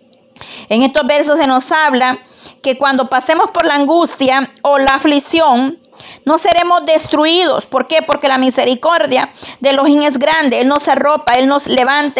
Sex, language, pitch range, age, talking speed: female, Spanish, 260-305 Hz, 40-59, 160 wpm